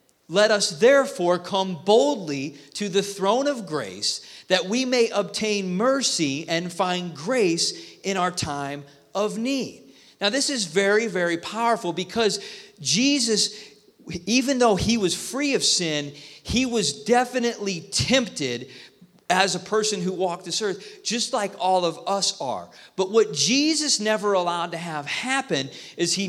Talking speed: 150 wpm